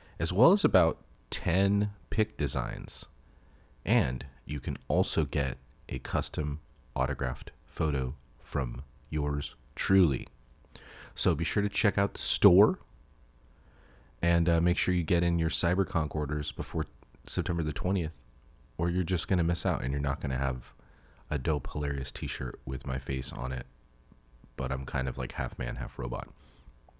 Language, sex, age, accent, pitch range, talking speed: English, male, 30-49, American, 65-90 Hz, 160 wpm